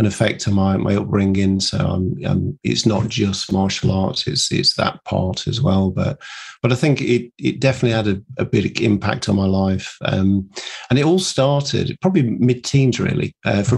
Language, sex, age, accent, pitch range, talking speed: English, male, 40-59, British, 105-125 Hz, 200 wpm